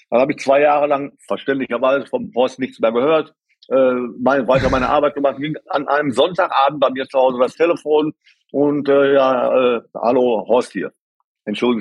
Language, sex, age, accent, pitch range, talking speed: German, male, 50-69, German, 125-170 Hz, 185 wpm